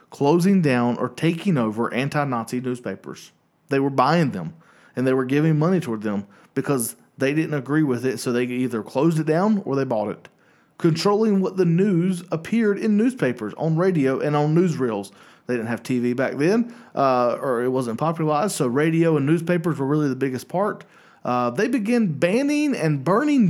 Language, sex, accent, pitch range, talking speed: English, male, American, 130-185 Hz, 185 wpm